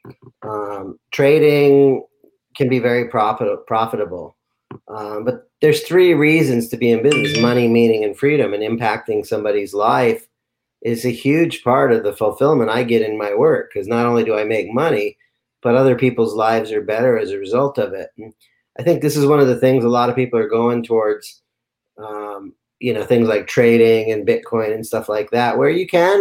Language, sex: English, male